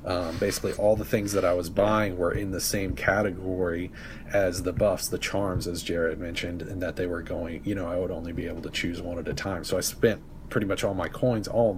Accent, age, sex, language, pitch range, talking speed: American, 40-59, male, English, 90-110 Hz, 255 wpm